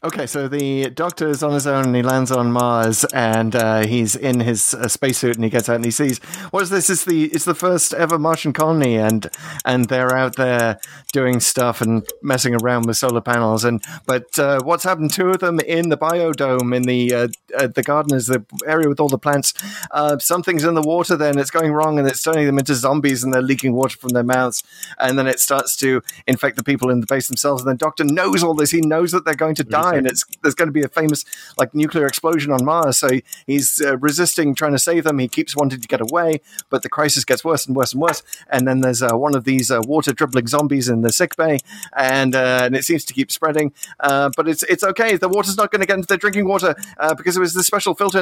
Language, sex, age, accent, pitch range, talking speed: English, male, 30-49, British, 130-175 Hz, 255 wpm